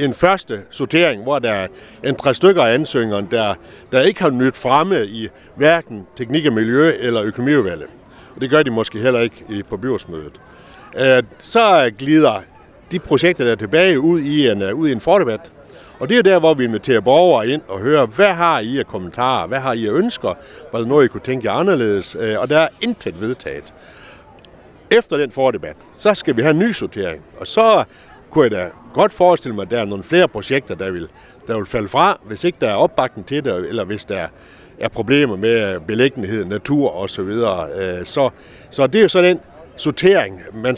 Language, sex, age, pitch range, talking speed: Danish, male, 60-79, 110-165 Hz, 200 wpm